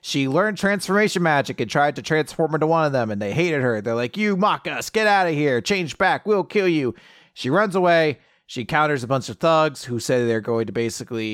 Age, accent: 30-49, American